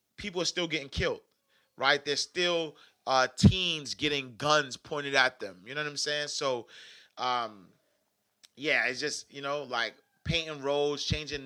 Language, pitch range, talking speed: English, 125-155 Hz, 160 wpm